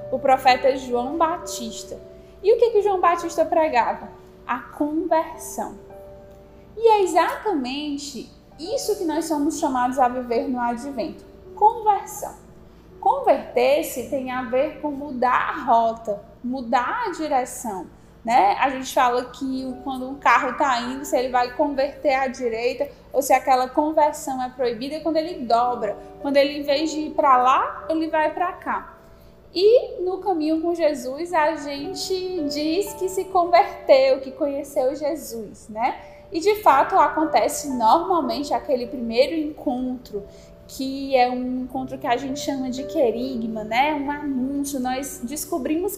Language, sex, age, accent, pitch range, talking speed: Portuguese, female, 10-29, Brazilian, 255-330 Hz, 145 wpm